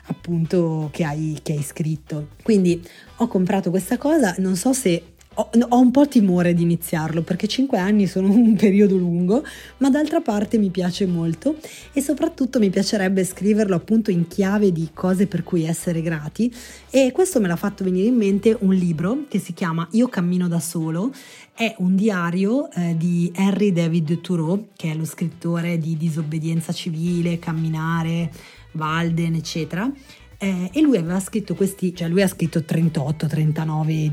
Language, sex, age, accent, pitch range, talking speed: Italian, female, 20-39, native, 170-215 Hz, 165 wpm